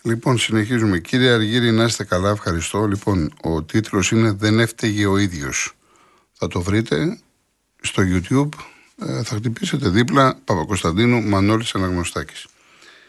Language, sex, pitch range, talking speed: Greek, male, 95-125 Hz, 130 wpm